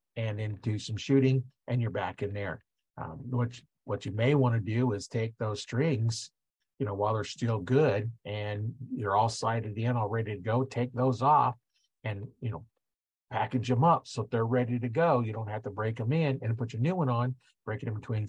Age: 50-69